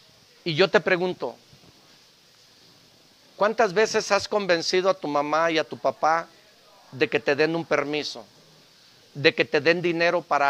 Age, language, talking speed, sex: 50-69, Spanish, 155 wpm, male